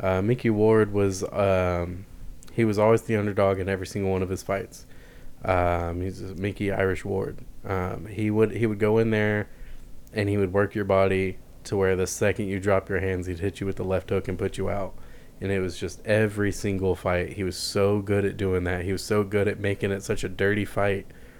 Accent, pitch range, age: American, 95-110 Hz, 20-39